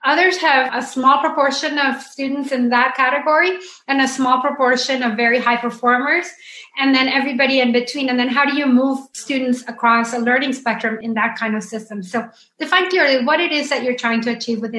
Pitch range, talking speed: 225-270 Hz, 210 wpm